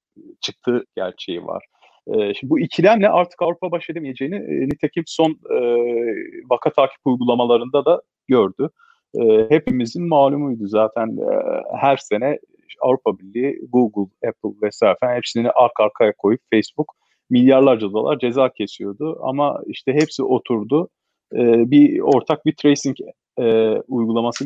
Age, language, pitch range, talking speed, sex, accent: 40-59, Turkish, 115-150 Hz, 130 wpm, male, native